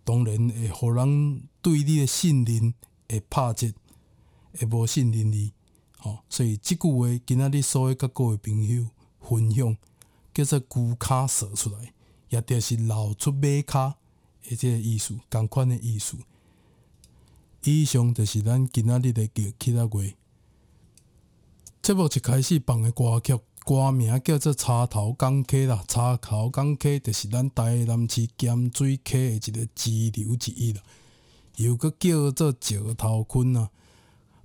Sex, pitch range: male, 110-130 Hz